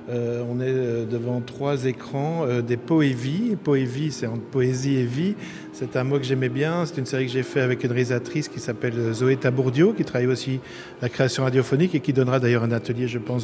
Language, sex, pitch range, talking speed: French, male, 130-155 Hz, 215 wpm